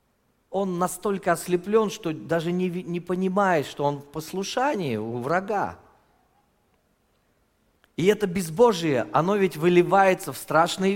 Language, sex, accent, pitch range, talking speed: Russian, male, native, 175-225 Hz, 120 wpm